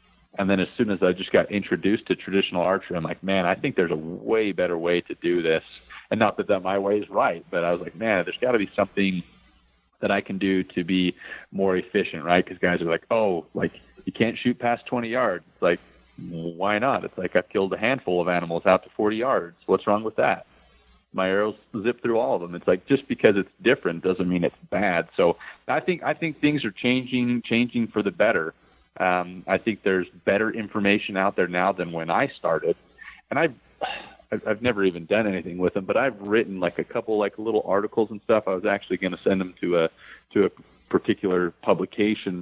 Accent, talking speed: American, 220 wpm